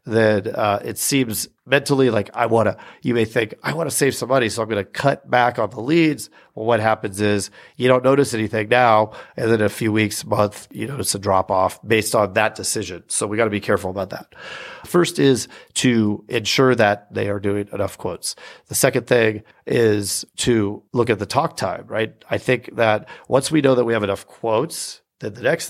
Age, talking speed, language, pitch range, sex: 40-59, 220 wpm, English, 105-125 Hz, male